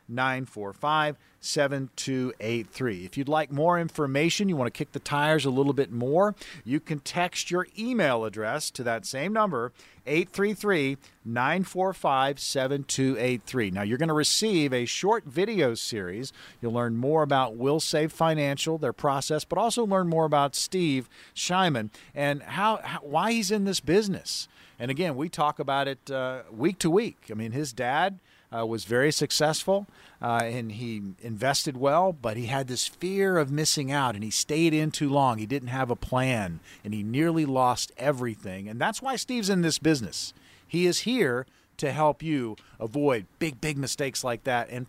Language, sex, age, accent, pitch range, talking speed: English, male, 50-69, American, 125-165 Hz, 170 wpm